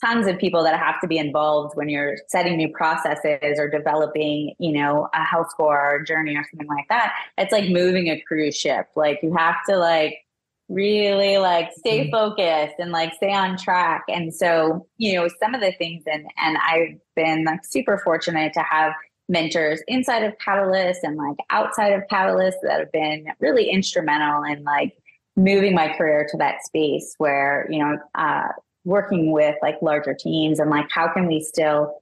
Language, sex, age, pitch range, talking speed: English, female, 20-39, 150-190 Hz, 185 wpm